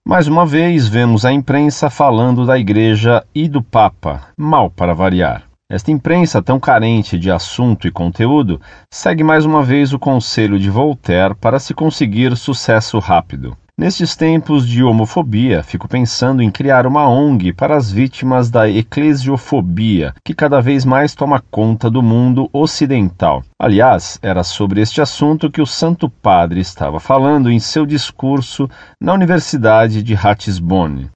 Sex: male